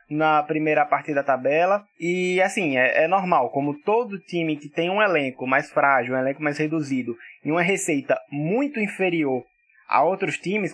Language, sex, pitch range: Portuguese, male, 150-220 Hz